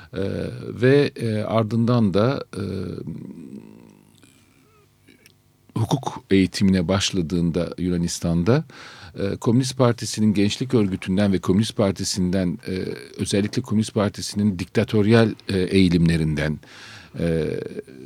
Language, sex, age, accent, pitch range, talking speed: Turkish, male, 50-69, native, 90-115 Hz, 85 wpm